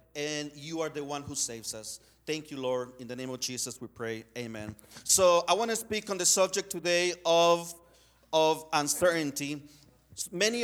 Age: 40-59